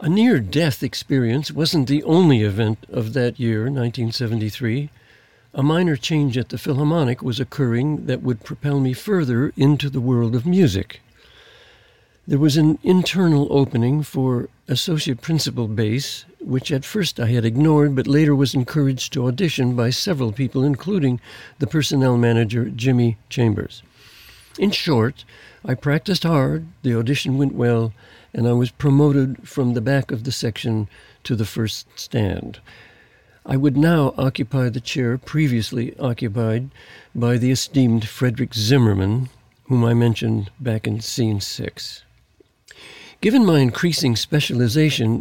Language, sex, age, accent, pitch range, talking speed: English, male, 60-79, American, 120-145 Hz, 140 wpm